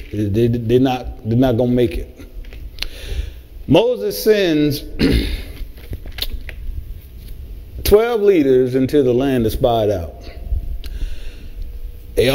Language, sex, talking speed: English, male, 95 wpm